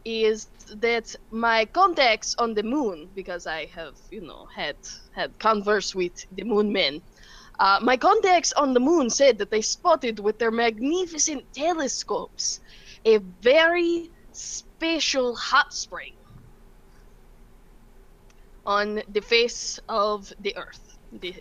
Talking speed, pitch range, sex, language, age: 125 wpm, 210-255 Hz, female, English, 20-39